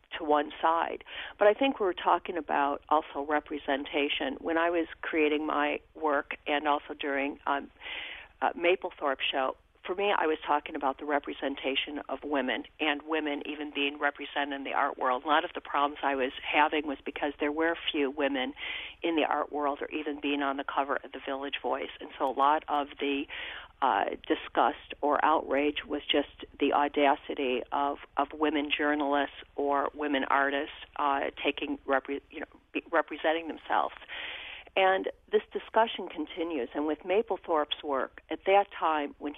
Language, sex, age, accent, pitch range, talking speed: English, female, 50-69, American, 140-160 Hz, 170 wpm